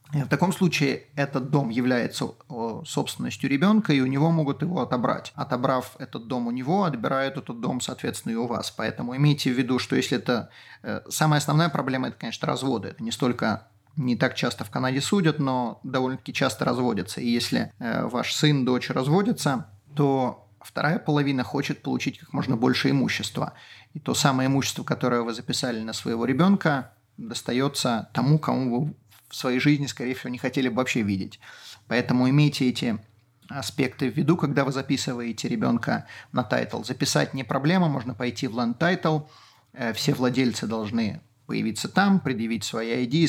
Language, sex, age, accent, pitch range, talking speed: Russian, male, 30-49, native, 125-150 Hz, 165 wpm